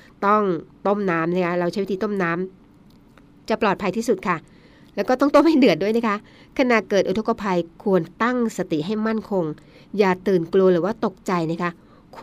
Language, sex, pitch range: Thai, female, 175-215 Hz